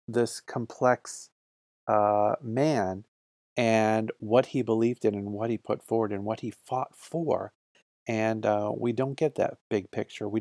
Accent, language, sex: American, English, male